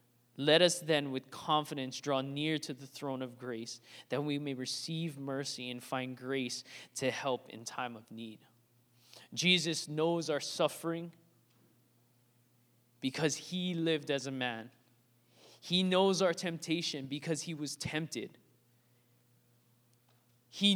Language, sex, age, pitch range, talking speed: English, male, 20-39, 120-195 Hz, 130 wpm